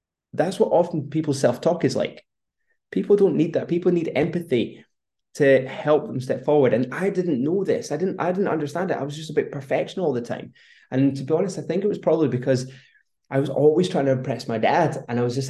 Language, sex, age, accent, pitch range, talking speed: English, male, 20-39, British, 130-160 Hz, 235 wpm